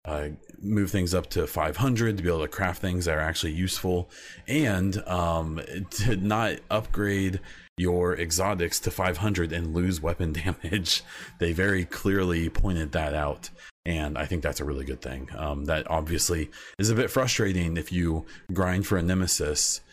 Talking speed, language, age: 175 wpm, English, 30-49